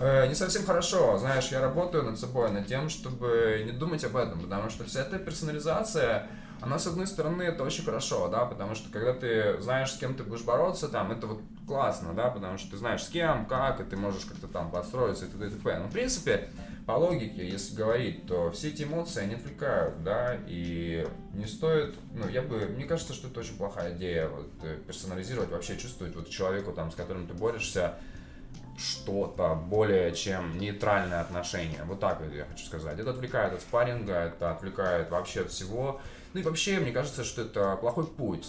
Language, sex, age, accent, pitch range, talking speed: Ukrainian, male, 20-39, native, 90-130 Hz, 195 wpm